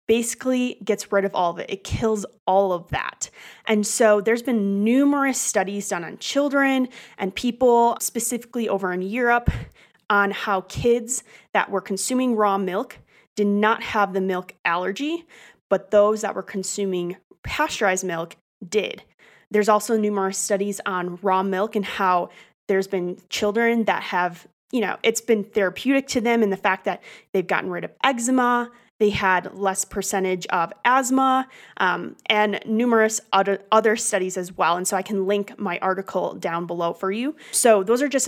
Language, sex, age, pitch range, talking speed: English, female, 20-39, 190-230 Hz, 170 wpm